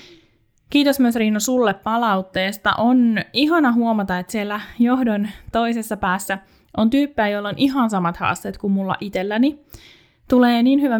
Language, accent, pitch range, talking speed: Finnish, native, 190-255 Hz, 140 wpm